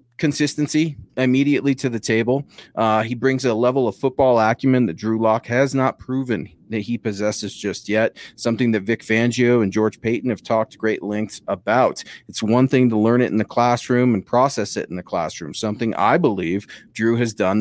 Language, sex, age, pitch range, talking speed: English, male, 30-49, 110-135 Hz, 195 wpm